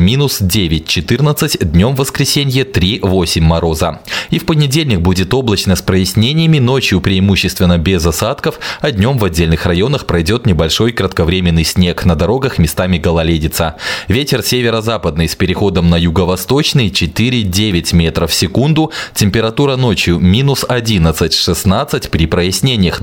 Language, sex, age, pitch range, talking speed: Russian, male, 20-39, 85-130 Hz, 120 wpm